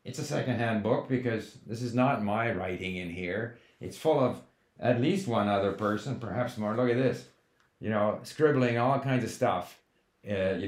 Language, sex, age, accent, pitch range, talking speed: English, male, 50-69, American, 100-130 Hz, 190 wpm